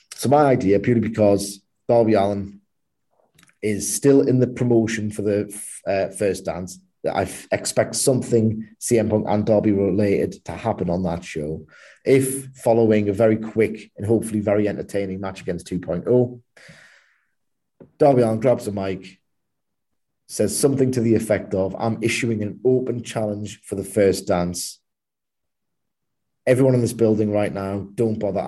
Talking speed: 145 wpm